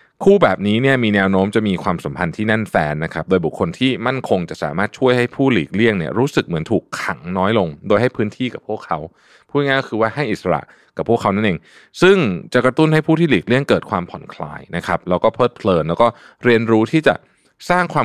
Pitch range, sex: 95-145 Hz, male